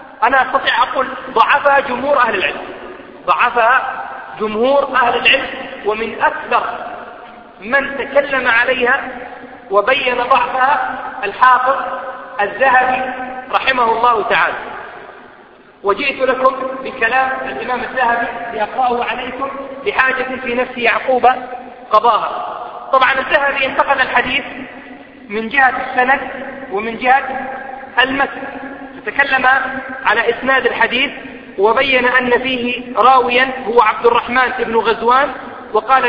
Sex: male